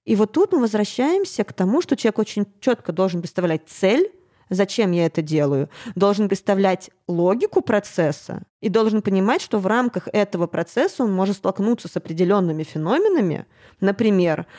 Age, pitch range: 20-39, 185-255 Hz